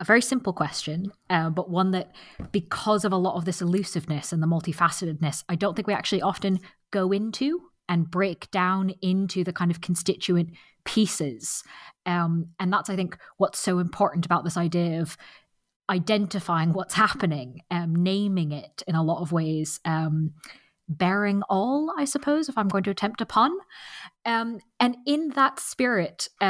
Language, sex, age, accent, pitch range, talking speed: English, female, 20-39, British, 165-205 Hz, 170 wpm